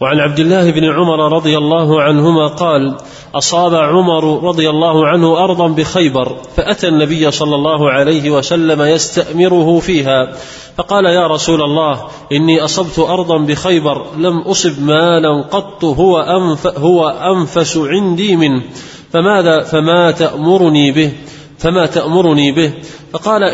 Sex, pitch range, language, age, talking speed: male, 150-175 Hz, Arabic, 30-49, 125 wpm